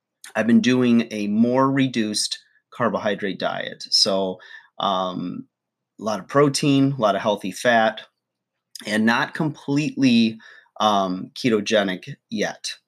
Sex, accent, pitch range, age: male, American, 100-130 Hz, 30-49